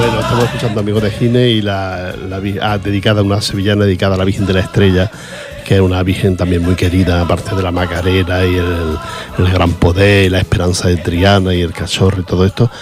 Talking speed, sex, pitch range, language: 210 wpm, male, 90-115 Hz, Portuguese